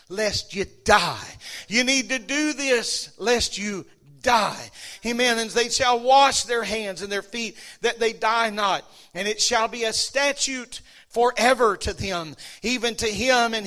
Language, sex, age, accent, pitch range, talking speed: English, male, 40-59, American, 195-235 Hz, 165 wpm